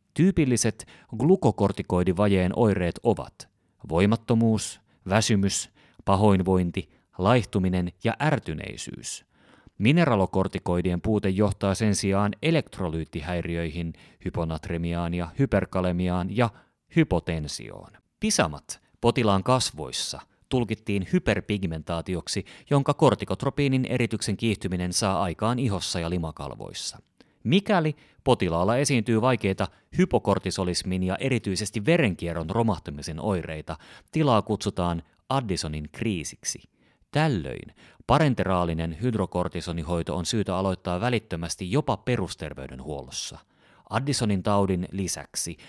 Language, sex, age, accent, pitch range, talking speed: Finnish, male, 30-49, native, 90-115 Hz, 80 wpm